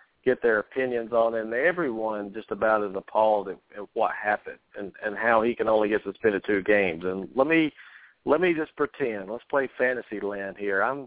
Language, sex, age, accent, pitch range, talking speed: English, male, 50-69, American, 100-125 Hz, 200 wpm